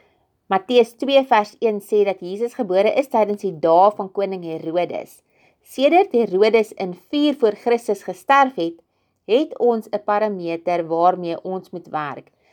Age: 30-49